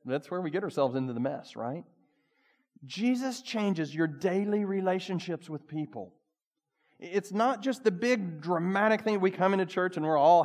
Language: English